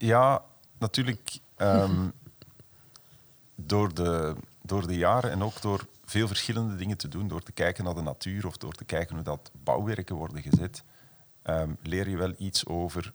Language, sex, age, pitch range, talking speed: Dutch, male, 40-59, 90-115 Hz, 170 wpm